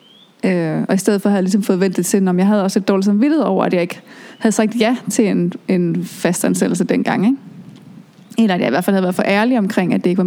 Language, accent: English, Danish